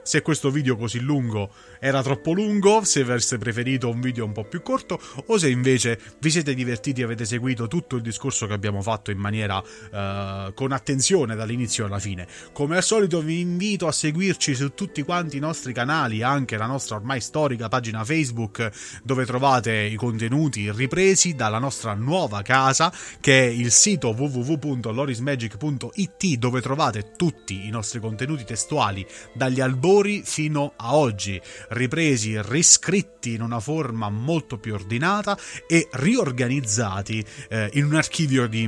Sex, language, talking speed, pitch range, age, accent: male, Italian, 155 wpm, 115-145 Hz, 30-49, native